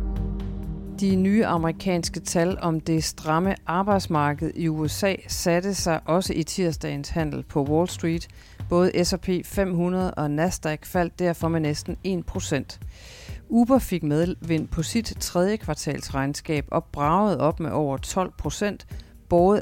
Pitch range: 145-185 Hz